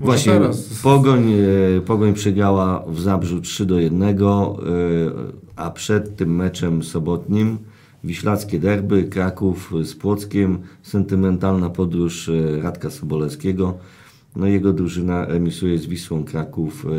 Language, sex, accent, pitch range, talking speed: Polish, male, native, 85-105 Hz, 105 wpm